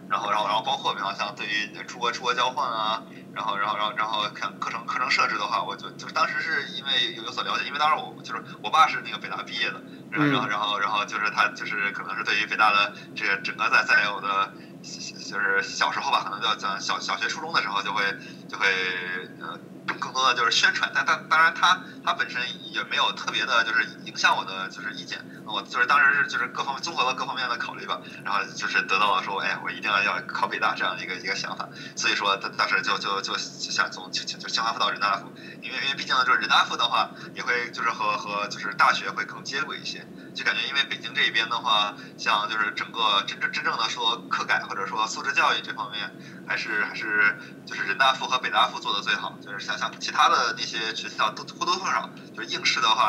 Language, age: Chinese, 20-39